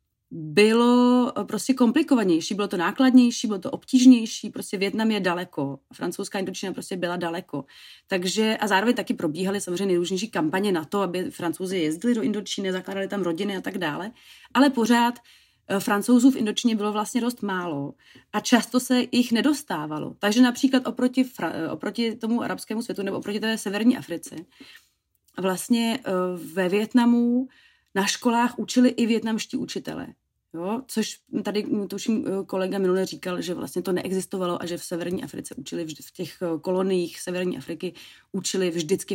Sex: female